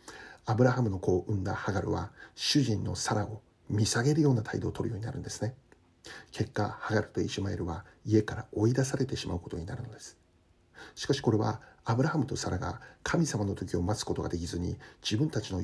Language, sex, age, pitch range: Japanese, male, 60-79, 95-125 Hz